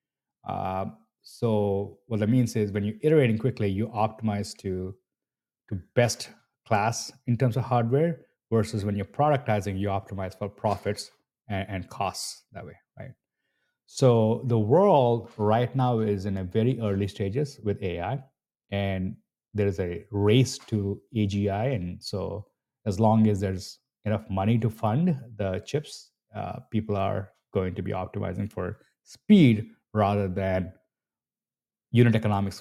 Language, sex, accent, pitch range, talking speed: English, male, Indian, 100-115 Hz, 145 wpm